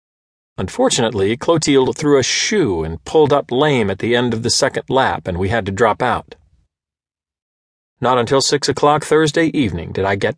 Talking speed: 180 wpm